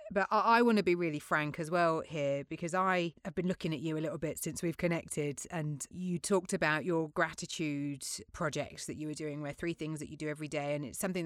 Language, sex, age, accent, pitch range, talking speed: English, female, 30-49, British, 150-185 Hz, 245 wpm